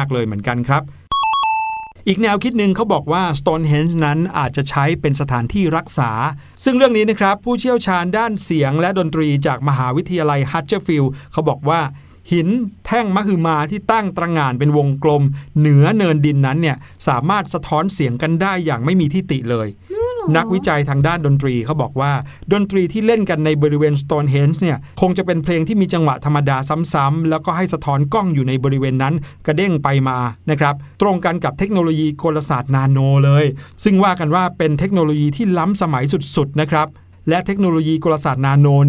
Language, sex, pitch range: Thai, male, 140-185 Hz